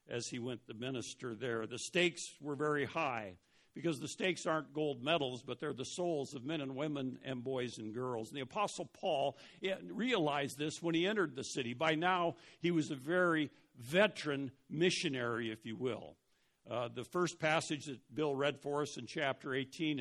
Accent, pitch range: American, 125-165 Hz